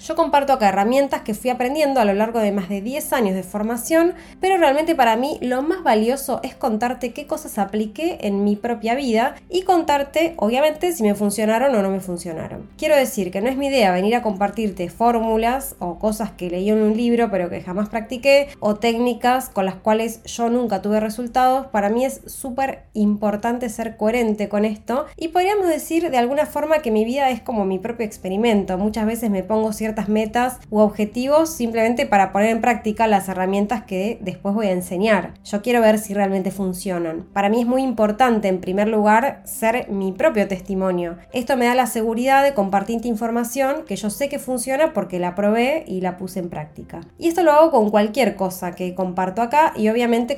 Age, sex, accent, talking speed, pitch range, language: 20-39, female, Argentinian, 200 wpm, 200-255 Hz, Spanish